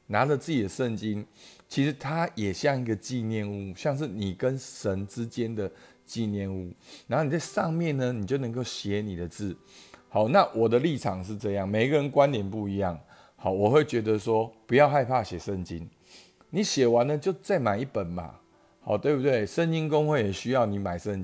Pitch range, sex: 95-130 Hz, male